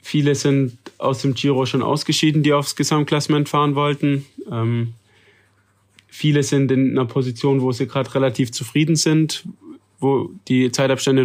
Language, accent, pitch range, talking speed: German, German, 120-140 Hz, 145 wpm